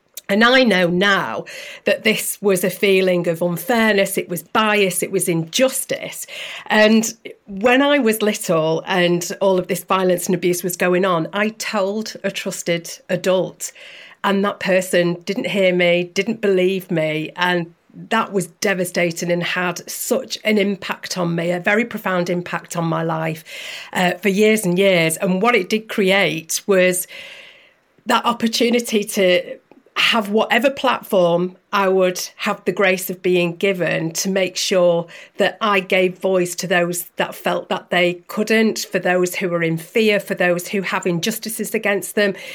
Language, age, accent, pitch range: English, 40-59, British, 175-205 Hz